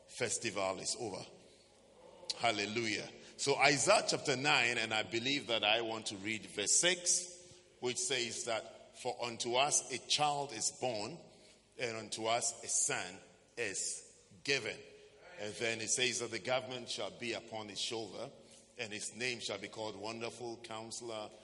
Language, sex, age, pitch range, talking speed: English, male, 50-69, 110-135 Hz, 155 wpm